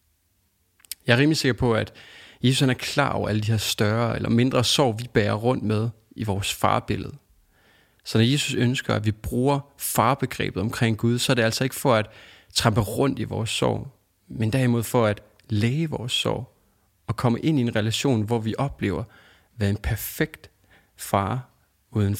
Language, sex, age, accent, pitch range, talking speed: English, male, 30-49, Danish, 100-125 Hz, 175 wpm